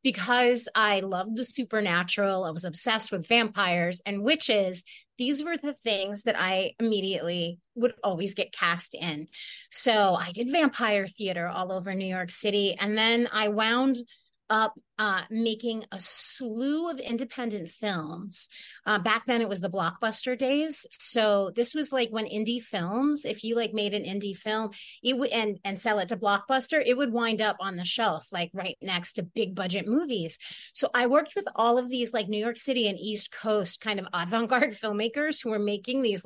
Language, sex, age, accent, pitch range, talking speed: English, female, 30-49, American, 195-250 Hz, 185 wpm